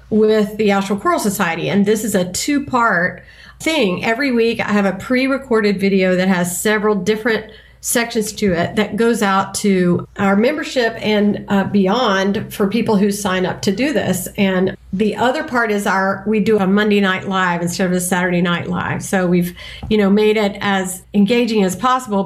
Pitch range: 195-235 Hz